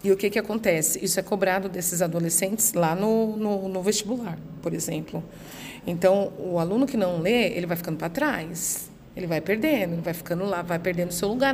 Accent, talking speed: Brazilian, 205 wpm